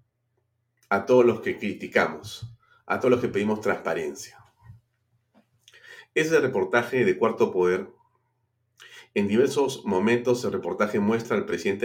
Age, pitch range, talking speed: 40-59, 110-120 Hz, 120 wpm